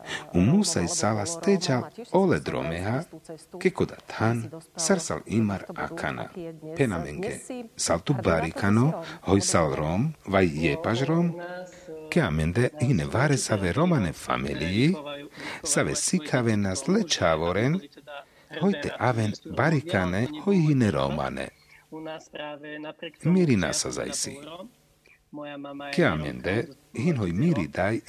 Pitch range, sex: 110-165 Hz, male